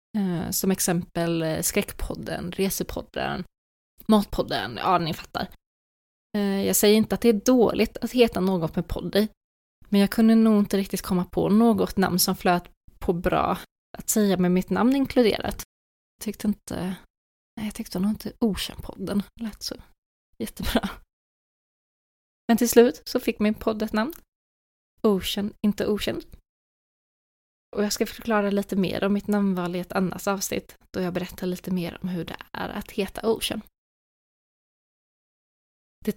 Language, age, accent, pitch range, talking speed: Swedish, 20-39, native, 180-210 Hz, 150 wpm